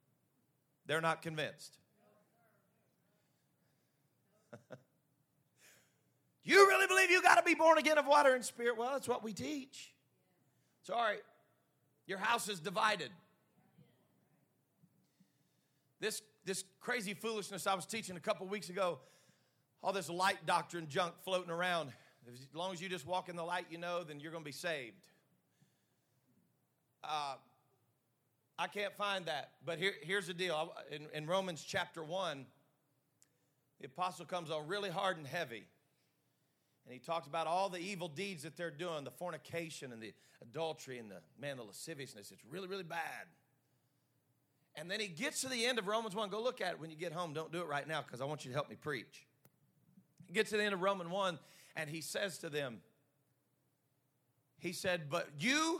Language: English